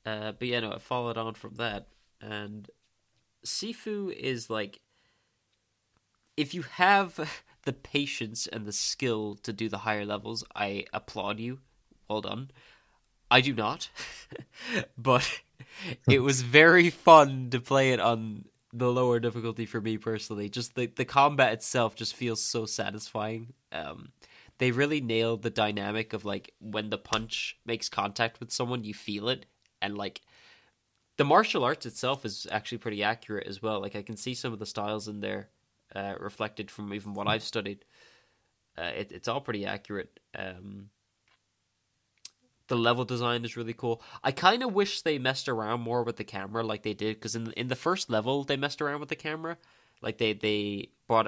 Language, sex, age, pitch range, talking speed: English, male, 20-39, 105-125 Hz, 175 wpm